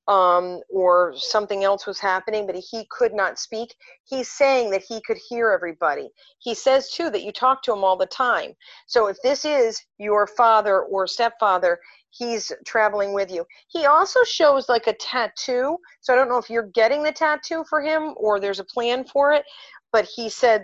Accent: American